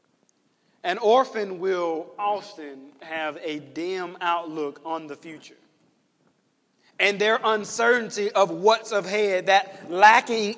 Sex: male